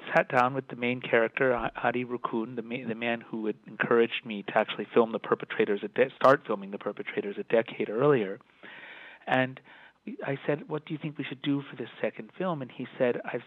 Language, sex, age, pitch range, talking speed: English, male, 40-59, 115-140 Hz, 210 wpm